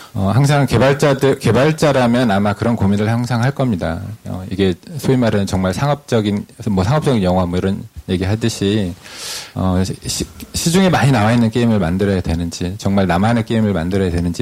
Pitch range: 100-125 Hz